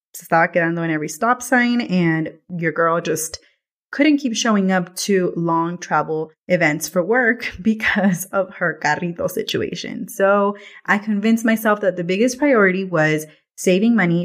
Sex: female